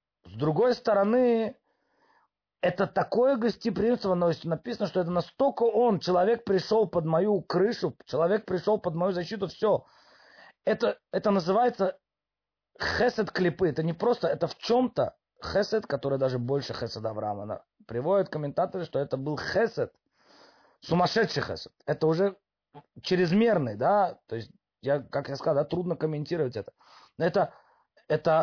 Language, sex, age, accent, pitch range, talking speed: Russian, male, 30-49, native, 150-210 Hz, 135 wpm